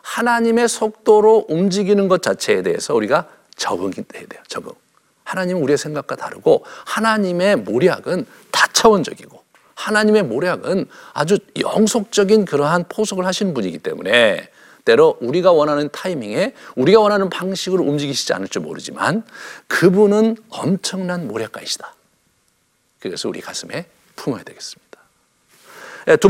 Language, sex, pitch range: Korean, male, 185-235 Hz